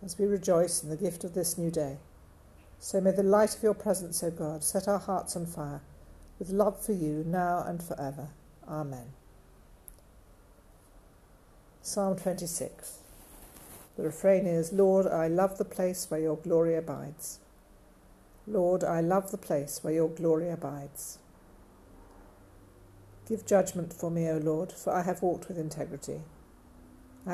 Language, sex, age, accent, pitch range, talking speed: English, female, 60-79, British, 145-185 Hz, 150 wpm